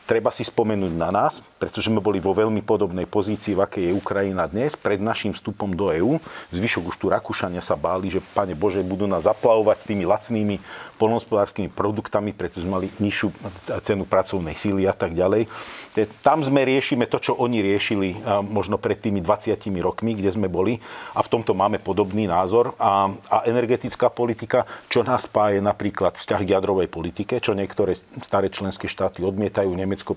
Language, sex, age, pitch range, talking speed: Slovak, male, 40-59, 95-110 Hz, 175 wpm